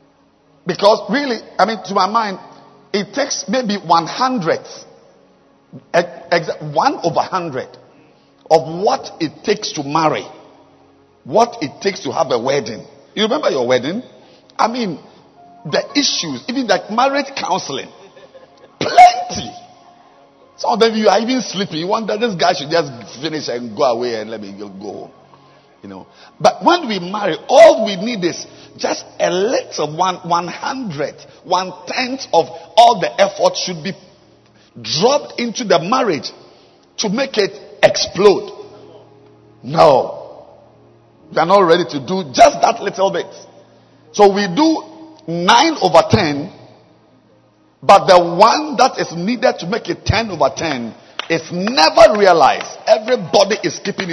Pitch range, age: 165-250 Hz, 50-69